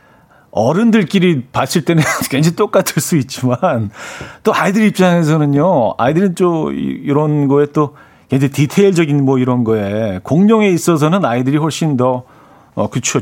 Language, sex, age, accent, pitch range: Korean, male, 40-59, native, 125-165 Hz